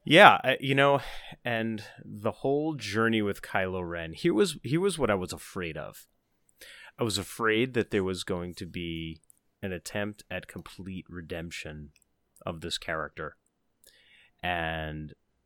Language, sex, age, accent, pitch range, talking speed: English, male, 30-49, American, 85-105 Hz, 145 wpm